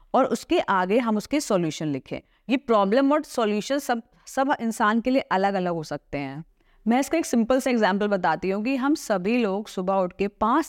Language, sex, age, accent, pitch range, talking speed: Hindi, female, 30-49, native, 190-250 Hz, 210 wpm